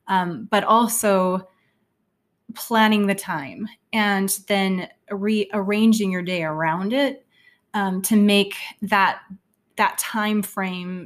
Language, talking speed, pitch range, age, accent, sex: English, 110 wpm, 175-210 Hz, 20-39, American, female